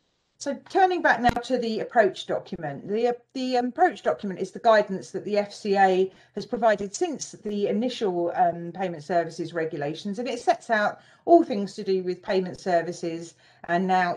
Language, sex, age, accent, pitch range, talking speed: English, female, 40-59, British, 175-220 Hz, 170 wpm